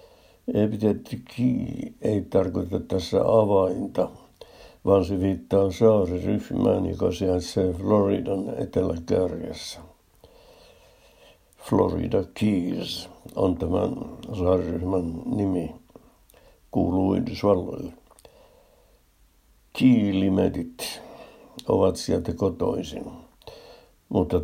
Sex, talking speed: male, 65 wpm